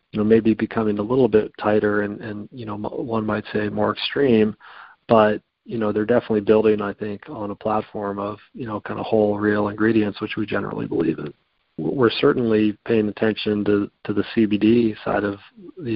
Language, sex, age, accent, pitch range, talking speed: English, male, 40-59, American, 105-115 Hz, 195 wpm